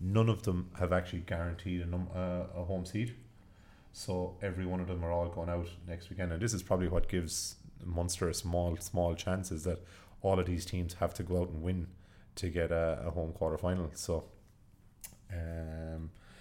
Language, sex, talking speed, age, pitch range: English, male, 200 wpm, 30-49, 85-100 Hz